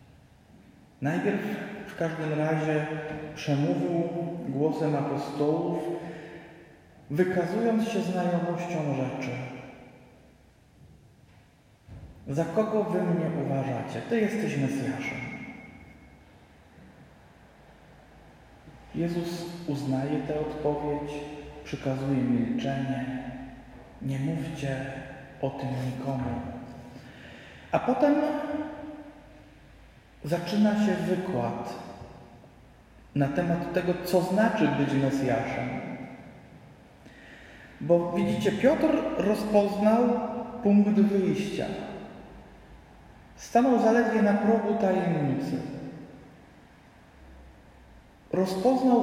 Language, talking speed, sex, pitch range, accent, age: Polish, 65 wpm, male, 135-190 Hz, native, 40-59